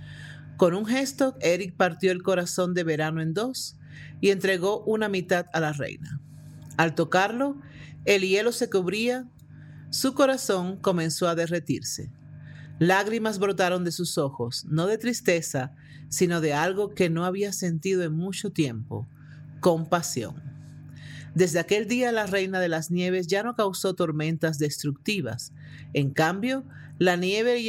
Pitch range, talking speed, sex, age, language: 150-195 Hz, 145 wpm, male, 40-59, Spanish